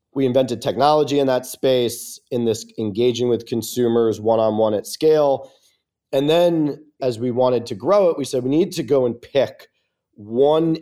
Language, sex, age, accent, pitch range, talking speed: English, male, 40-59, American, 110-140 Hz, 170 wpm